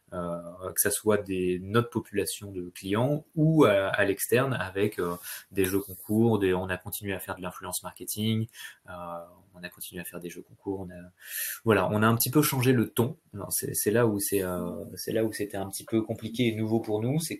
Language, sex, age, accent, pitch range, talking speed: French, male, 20-39, French, 95-115 Hz, 200 wpm